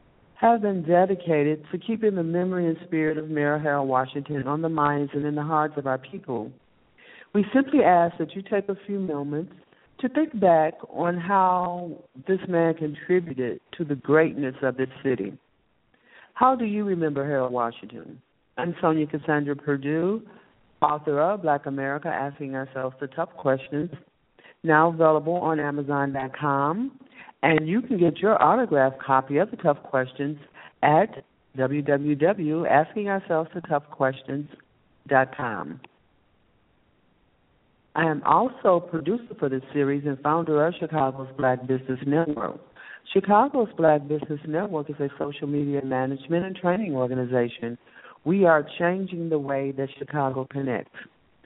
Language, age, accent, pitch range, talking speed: English, 60-79, American, 140-175 Hz, 135 wpm